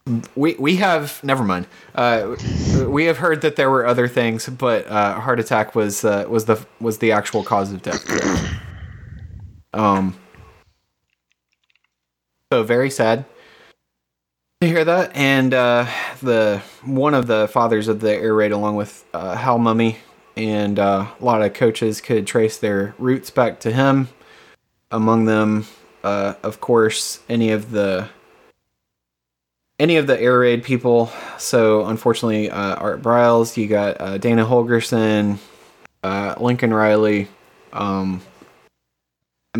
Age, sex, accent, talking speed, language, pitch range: 20-39, male, American, 140 wpm, English, 100-120 Hz